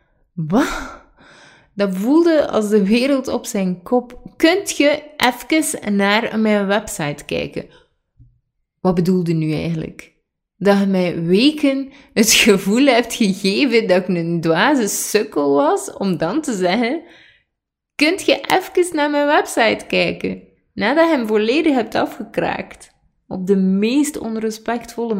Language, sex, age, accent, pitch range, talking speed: Dutch, female, 20-39, Dutch, 165-235 Hz, 130 wpm